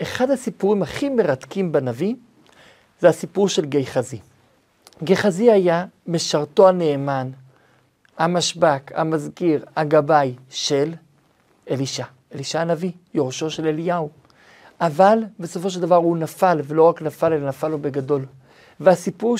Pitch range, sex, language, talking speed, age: 150-200 Hz, male, Hebrew, 115 wpm, 50-69